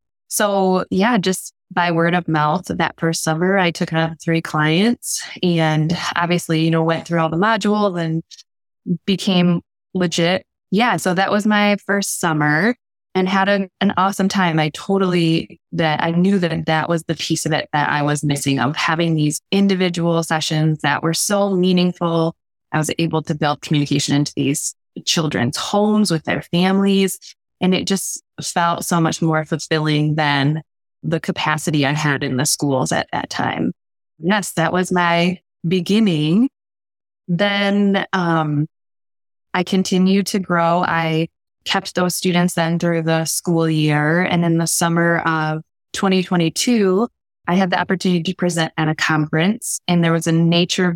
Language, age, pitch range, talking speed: English, 20-39, 160-185 Hz, 160 wpm